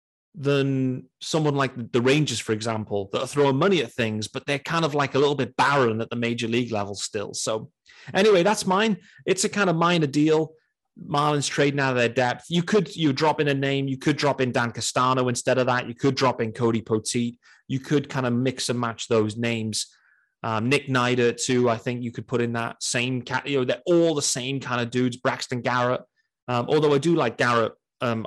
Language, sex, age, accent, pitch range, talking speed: English, male, 30-49, British, 115-150 Hz, 225 wpm